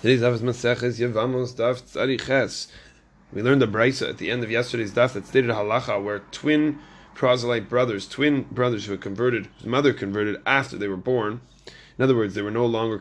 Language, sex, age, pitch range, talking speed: English, male, 20-39, 105-130 Hz, 195 wpm